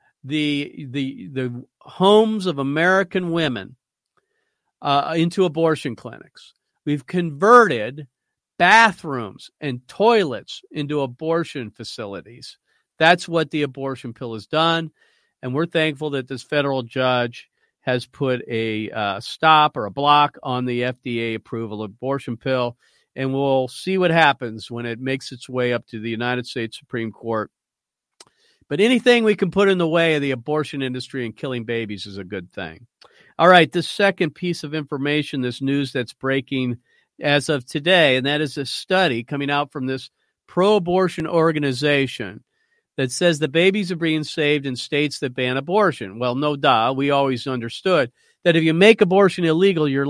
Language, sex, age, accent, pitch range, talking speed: English, male, 50-69, American, 125-165 Hz, 160 wpm